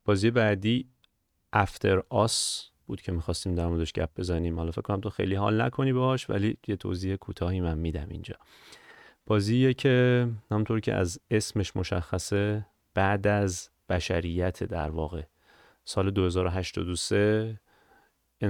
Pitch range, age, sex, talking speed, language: 95-115 Hz, 30-49, male, 125 wpm, Persian